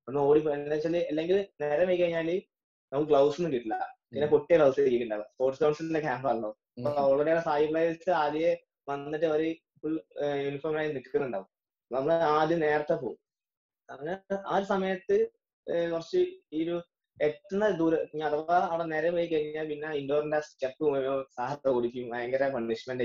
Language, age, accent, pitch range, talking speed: Malayalam, 20-39, native, 135-170 Hz, 135 wpm